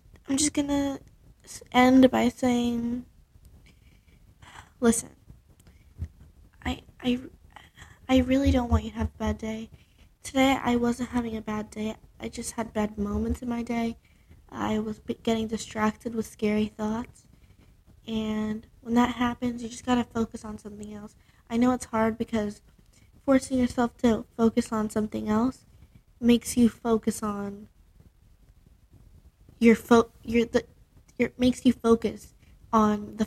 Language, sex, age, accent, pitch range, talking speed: English, female, 20-39, American, 210-245 Hz, 145 wpm